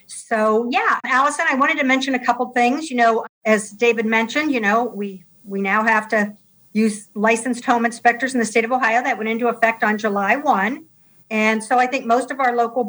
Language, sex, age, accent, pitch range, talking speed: English, female, 50-69, American, 195-230 Hz, 215 wpm